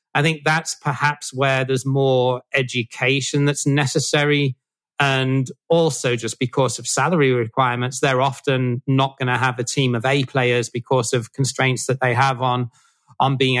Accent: British